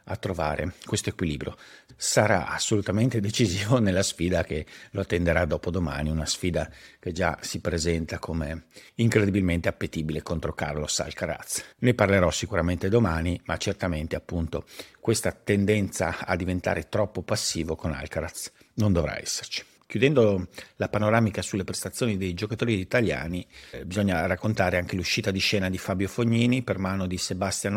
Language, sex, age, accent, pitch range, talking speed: Italian, male, 50-69, native, 85-105 Hz, 140 wpm